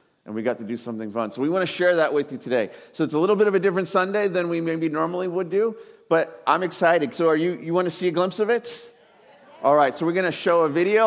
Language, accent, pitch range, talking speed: English, American, 130-170 Hz, 295 wpm